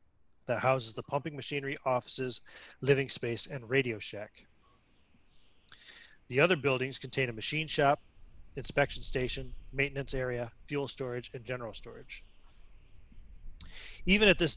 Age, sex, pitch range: 30-49, male, 115-140 Hz